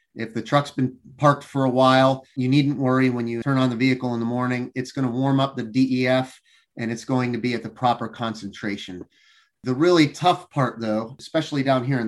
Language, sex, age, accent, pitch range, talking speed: English, male, 30-49, American, 105-130 Hz, 225 wpm